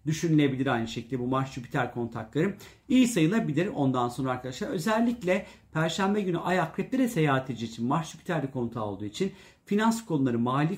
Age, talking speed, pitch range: 50-69, 155 wpm, 130-170 Hz